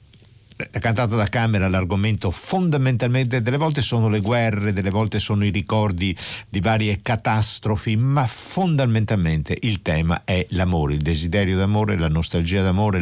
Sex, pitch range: male, 90-125 Hz